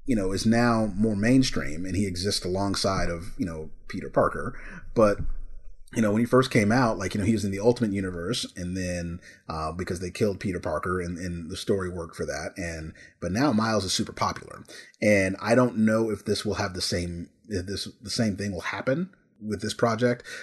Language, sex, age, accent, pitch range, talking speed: English, male, 30-49, American, 90-110 Hz, 215 wpm